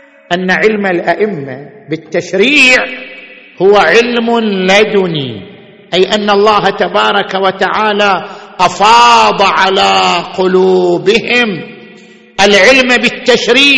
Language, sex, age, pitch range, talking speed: Arabic, male, 50-69, 185-250 Hz, 75 wpm